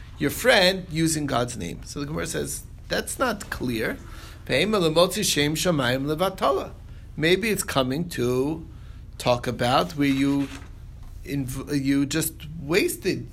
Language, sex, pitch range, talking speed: English, male, 130-175 Hz, 110 wpm